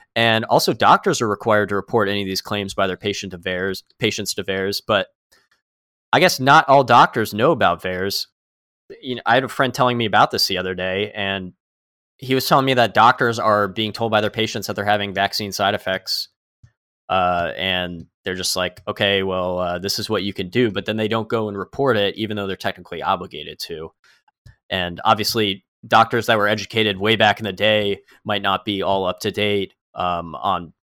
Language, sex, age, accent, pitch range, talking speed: English, male, 20-39, American, 95-110 Hz, 210 wpm